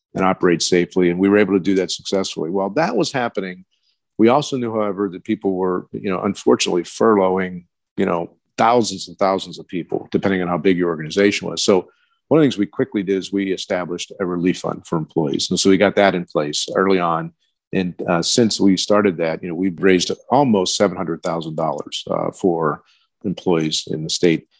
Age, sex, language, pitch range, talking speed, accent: 50-69, male, English, 90-100 Hz, 200 wpm, American